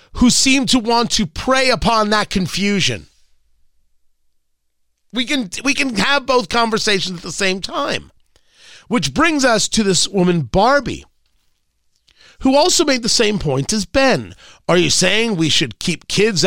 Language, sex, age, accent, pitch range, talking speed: English, male, 40-59, American, 145-225 Hz, 155 wpm